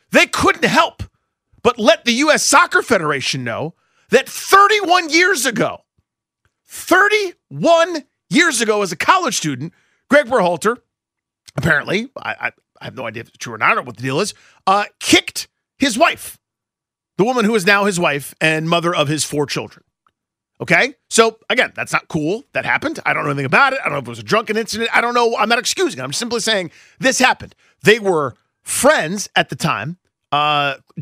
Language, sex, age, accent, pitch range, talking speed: English, male, 40-59, American, 160-255 Hz, 195 wpm